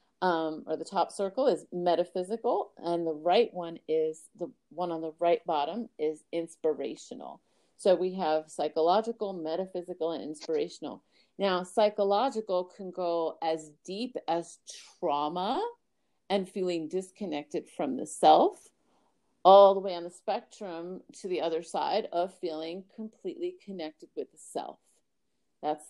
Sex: female